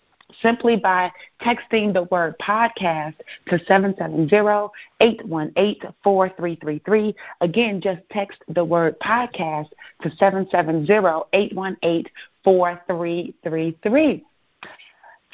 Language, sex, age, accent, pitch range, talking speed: English, female, 40-59, American, 180-225 Hz, 100 wpm